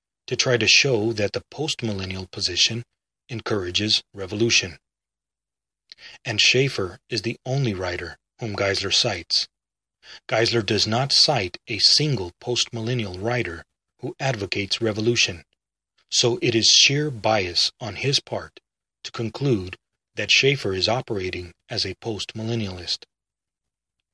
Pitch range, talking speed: 95-120 Hz, 115 wpm